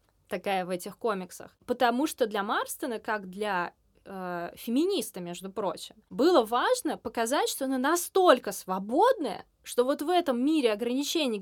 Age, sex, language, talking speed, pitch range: 20-39, female, Russian, 140 wpm, 215-300 Hz